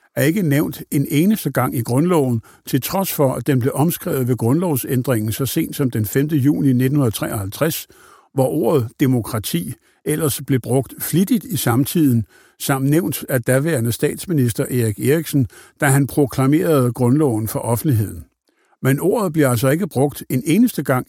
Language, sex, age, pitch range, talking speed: Danish, male, 60-79, 125-155 Hz, 155 wpm